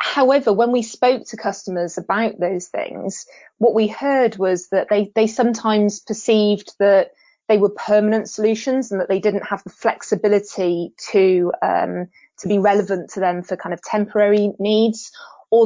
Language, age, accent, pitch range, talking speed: English, 20-39, British, 185-220 Hz, 165 wpm